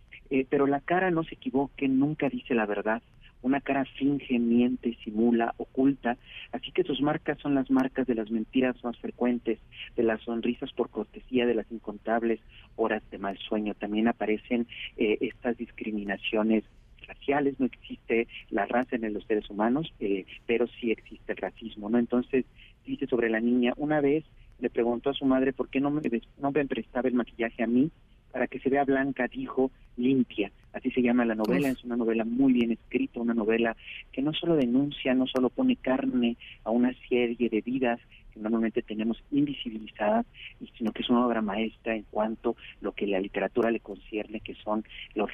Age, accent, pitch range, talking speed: 40-59, Mexican, 110-130 Hz, 185 wpm